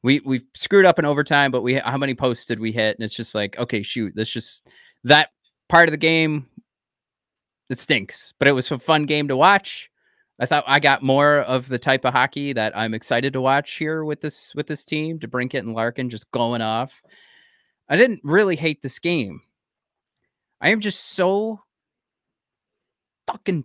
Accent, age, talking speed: American, 30-49, 195 wpm